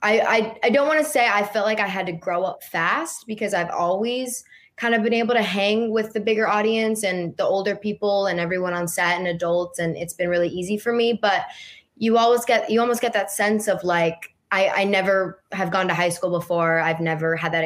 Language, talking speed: English, 240 wpm